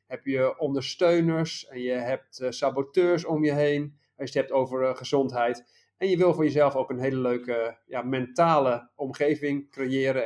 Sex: male